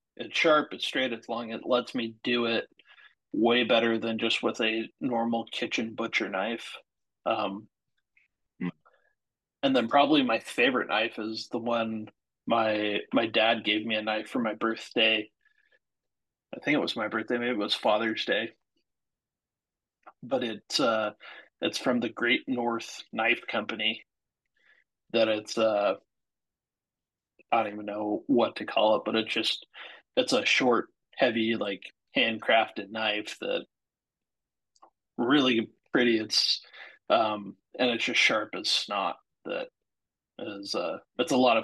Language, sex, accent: English, male, American